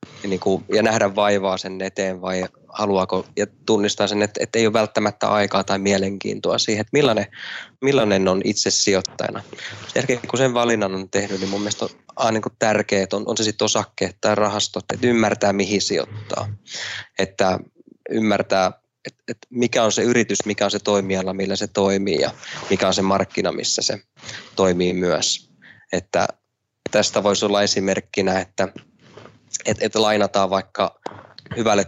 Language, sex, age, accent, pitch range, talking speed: Finnish, male, 20-39, native, 95-105 Hz, 165 wpm